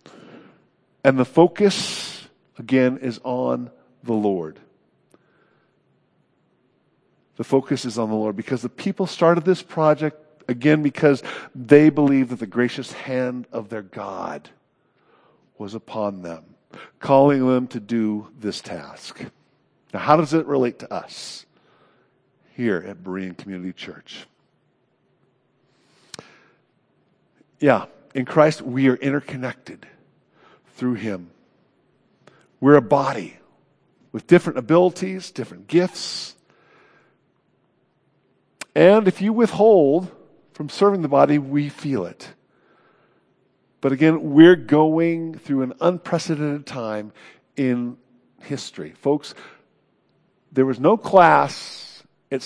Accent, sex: American, male